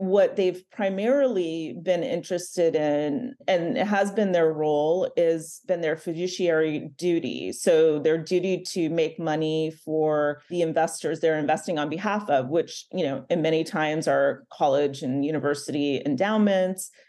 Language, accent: English, American